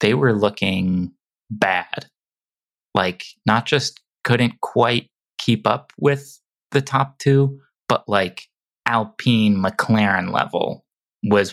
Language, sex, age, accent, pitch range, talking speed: English, male, 20-39, American, 105-130 Hz, 110 wpm